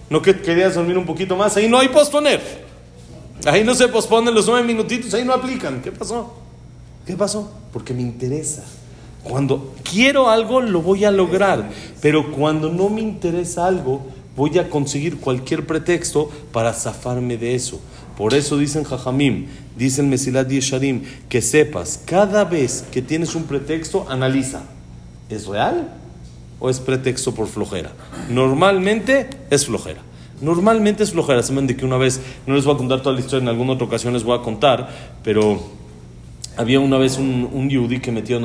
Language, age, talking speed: Spanish, 40-59, 170 wpm